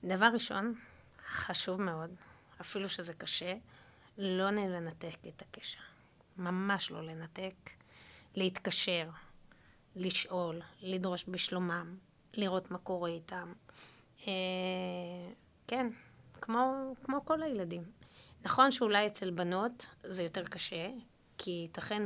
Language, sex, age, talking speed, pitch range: Hebrew, female, 20-39, 100 wpm, 170-200 Hz